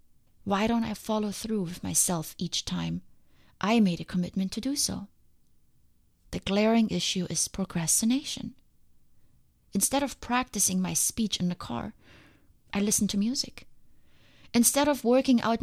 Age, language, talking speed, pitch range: 30-49, English, 140 wpm, 175-230 Hz